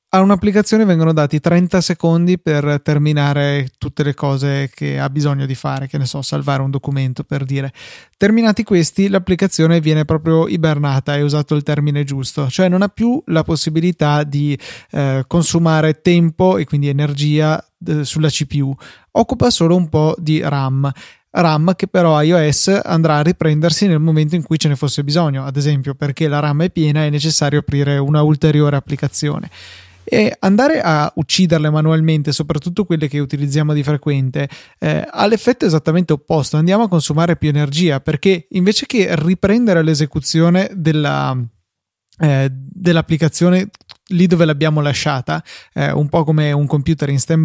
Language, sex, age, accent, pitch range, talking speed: Italian, male, 30-49, native, 145-170 Hz, 160 wpm